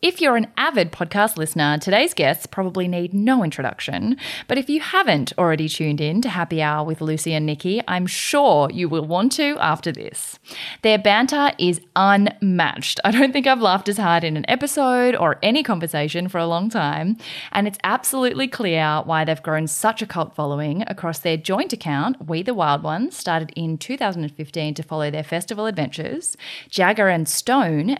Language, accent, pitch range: English, Australian, 155-225 Hz